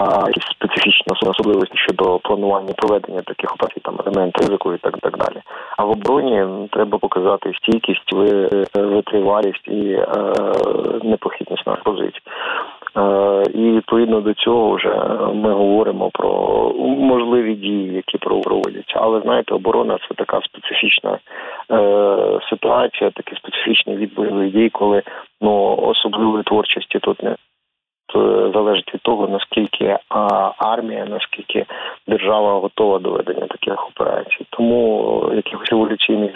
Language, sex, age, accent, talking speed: Ukrainian, male, 40-59, native, 115 wpm